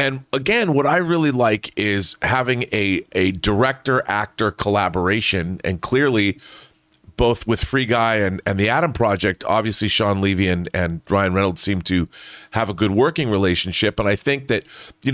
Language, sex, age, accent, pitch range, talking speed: English, male, 40-59, American, 100-130 Hz, 170 wpm